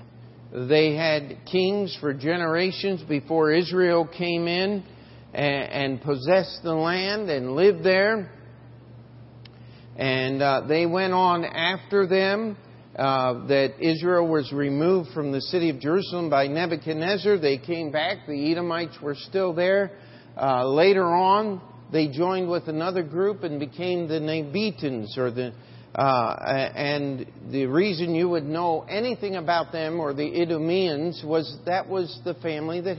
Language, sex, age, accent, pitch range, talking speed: English, male, 50-69, American, 135-175 Hz, 140 wpm